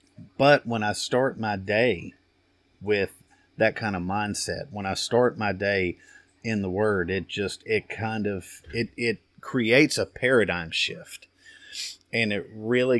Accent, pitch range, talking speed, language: American, 100-125 Hz, 150 wpm, English